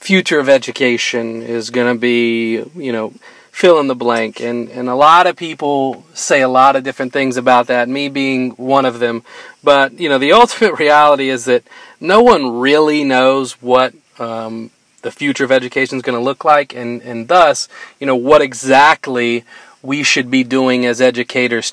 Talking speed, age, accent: 190 wpm, 40-59, American